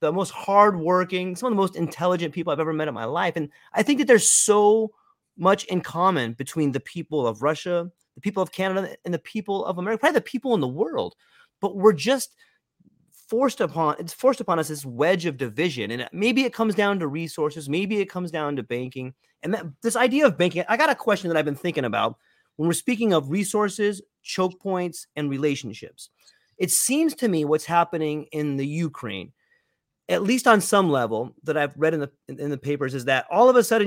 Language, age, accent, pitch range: English, 30-49, American, 150-210 Hz